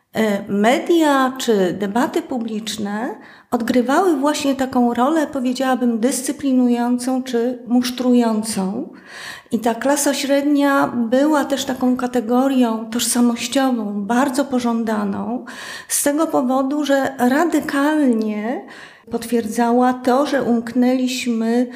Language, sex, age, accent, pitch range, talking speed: Polish, female, 30-49, native, 235-275 Hz, 90 wpm